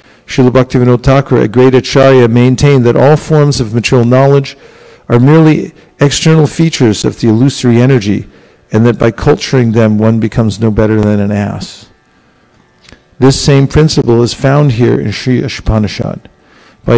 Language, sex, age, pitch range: English, male, 50-69, 110-135 Hz